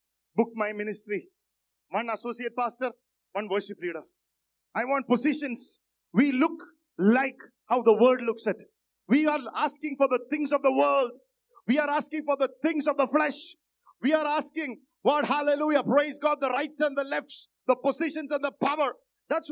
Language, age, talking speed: English, 50-69, 170 wpm